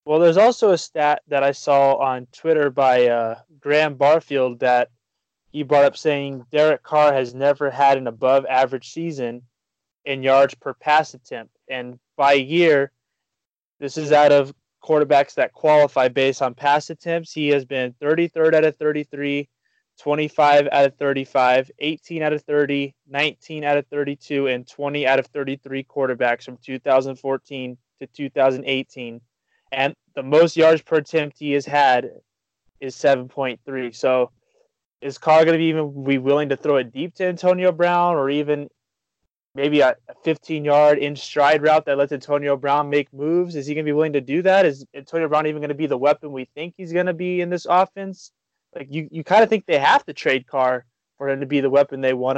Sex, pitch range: male, 135-155 Hz